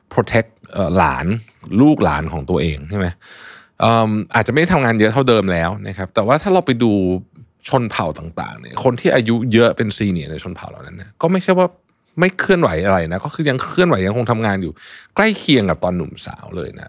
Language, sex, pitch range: Thai, male, 95-135 Hz